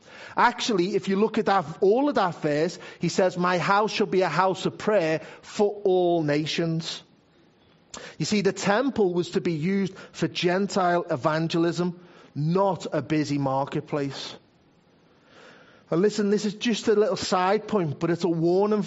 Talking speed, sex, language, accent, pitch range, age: 160 wpm, male, English, British, 160-200 Hz, 40-59